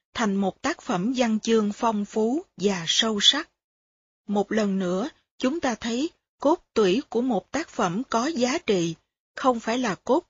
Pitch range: 190-240 Hz